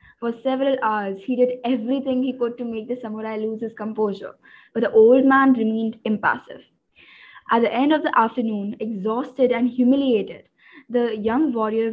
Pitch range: 220-260 Hz